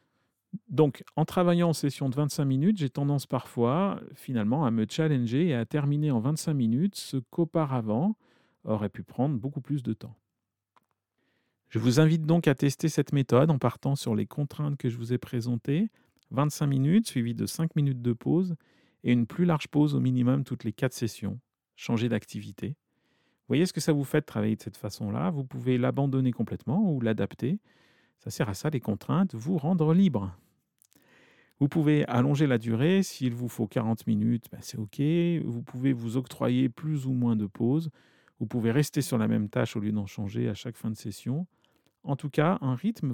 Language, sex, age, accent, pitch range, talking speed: French, male, 40-59, French, 115-155 Hz, 195 wpm